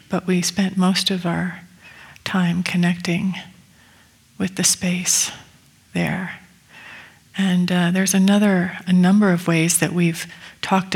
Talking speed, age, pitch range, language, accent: 125 wpm, 40-59, 170-190 Hz, English, American